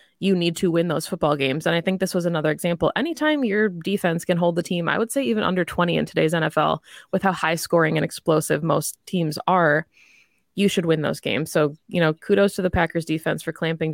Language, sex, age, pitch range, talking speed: English, female, 20-39, 160-190 Hz, 235 wpm